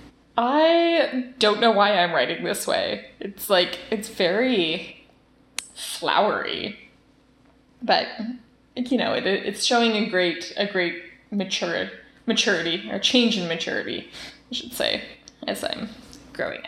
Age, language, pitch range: 10-29, English, 190-270 Hz